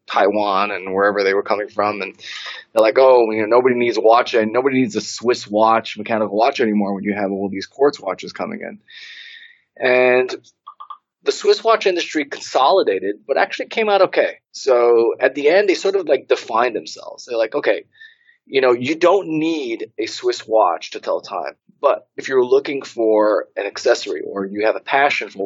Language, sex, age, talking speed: English, male, 20-39, 200 wpm